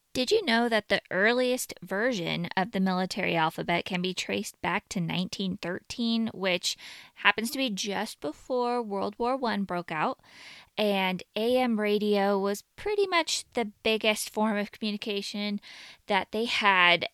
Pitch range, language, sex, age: 175-215 Hz, English, female, 20-39